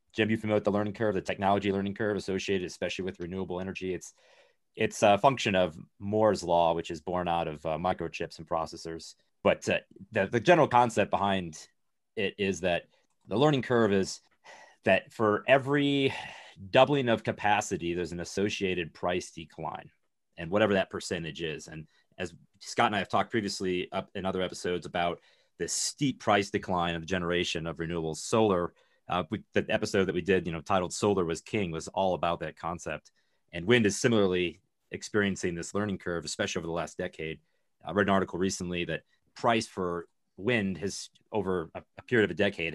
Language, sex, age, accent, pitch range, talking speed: English, male, 30-49, American, 85-105 Hz, 185 wpm